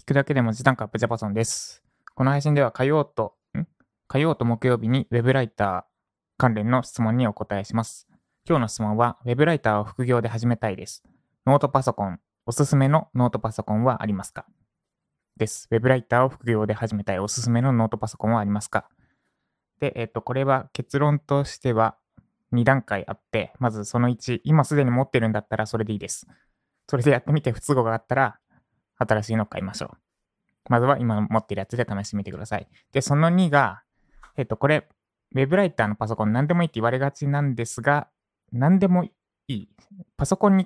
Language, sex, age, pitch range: Japanese, male, 20-39, 110-140 Hz